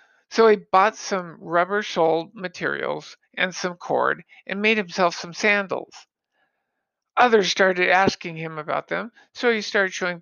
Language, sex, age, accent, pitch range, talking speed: English, male, 50-69, American, 165-195 Hz, 145 wpm